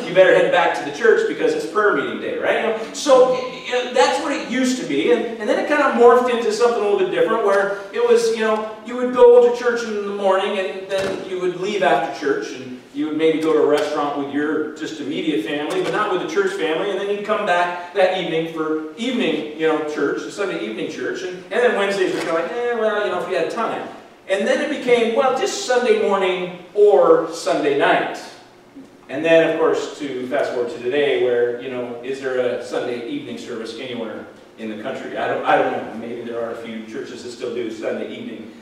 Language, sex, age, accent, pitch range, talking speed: English, male, 40-59, American, 165-250 Hz, 240 wpm